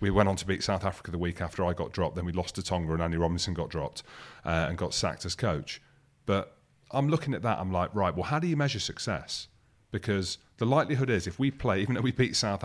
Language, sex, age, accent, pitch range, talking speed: English, male, 30-49, British, 85-110 Hz, 260 wpm